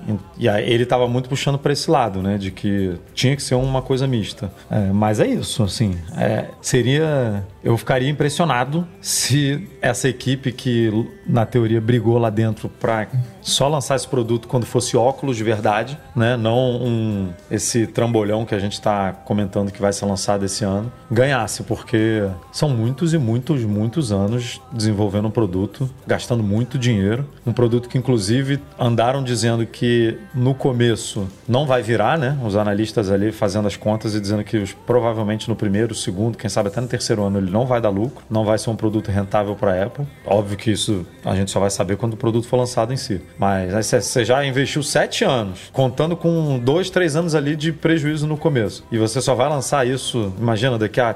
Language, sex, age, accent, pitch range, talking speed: Portuguese, male, 30-49, Brazilian, 105-130 Hz, 190 wpm